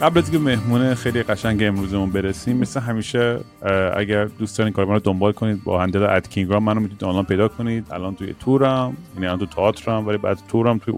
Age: 30-49